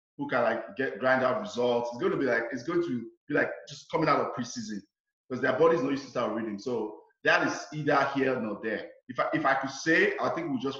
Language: English